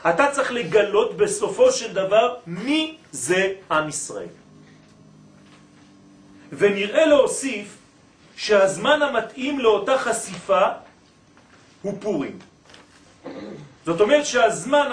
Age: 40-59